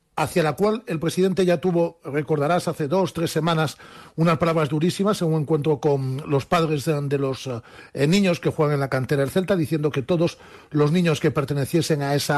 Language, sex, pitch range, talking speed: Spanish, male, 140-175 Hz, 205 wpm